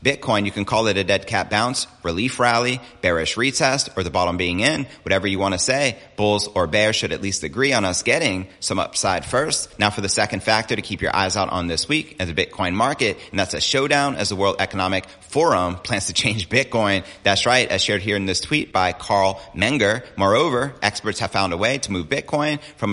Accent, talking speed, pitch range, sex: American, 230 wpm, 95-120 Hz, male